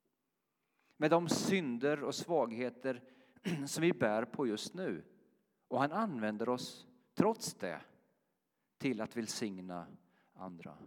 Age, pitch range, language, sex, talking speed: 40-59, 115-155 Hz, Swedish, male, 125 wpm